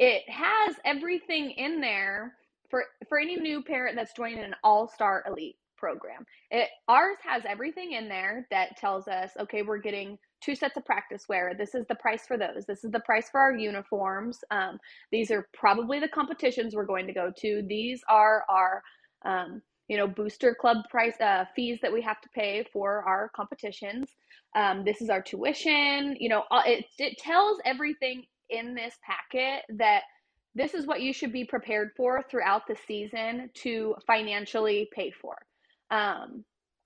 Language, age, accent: English, 20-39, American